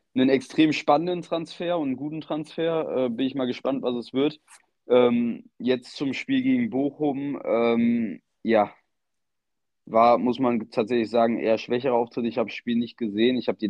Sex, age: male, 20-39